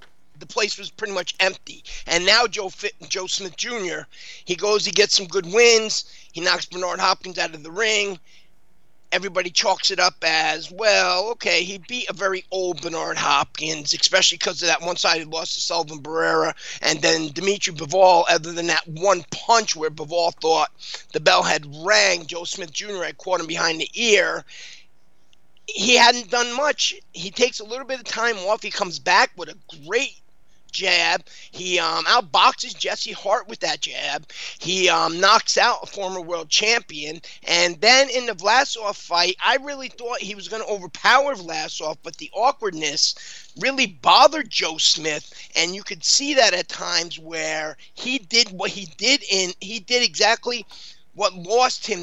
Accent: American